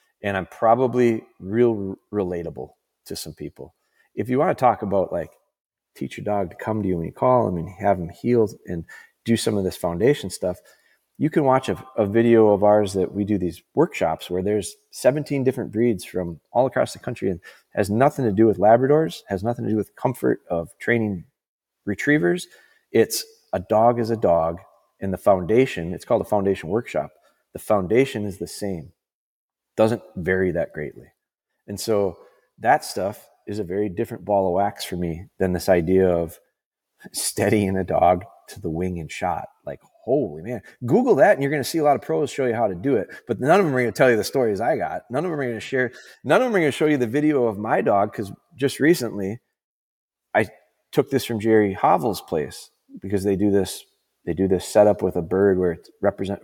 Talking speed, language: 215 wpm, English